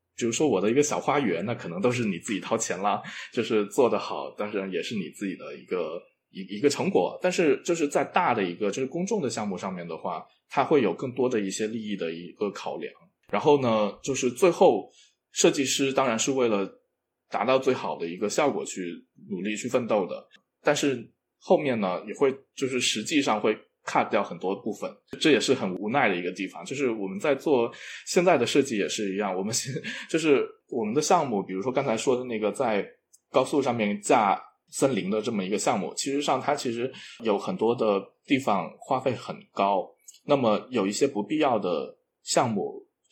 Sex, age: male, 20-39